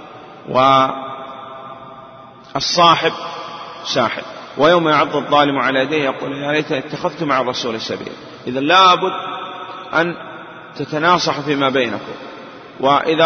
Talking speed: 95 wpm